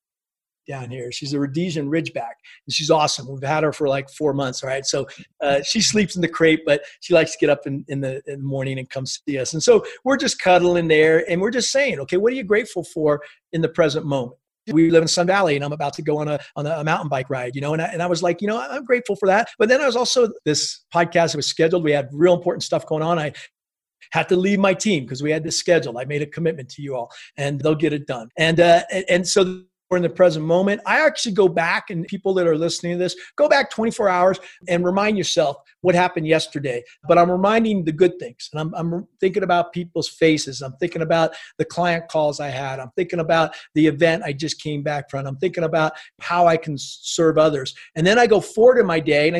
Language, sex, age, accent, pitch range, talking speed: English, male, 40-59, American, 150-180 Hz, 255 wpm